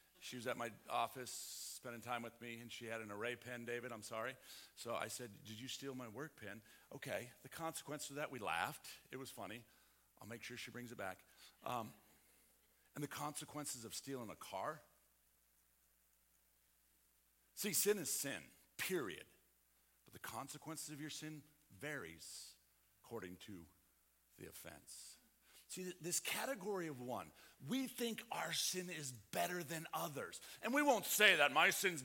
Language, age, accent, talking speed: English, 50-69, American, 165 wpm